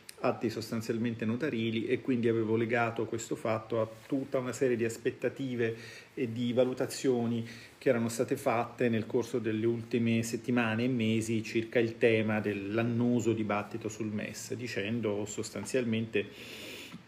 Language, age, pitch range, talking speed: Italian, 40-59, 110-125 Hz, 135 wpm